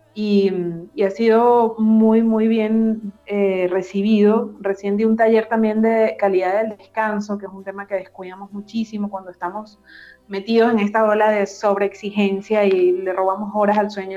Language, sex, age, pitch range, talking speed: Spanish, female, 30-49, 195-225 Hz, 165 wpm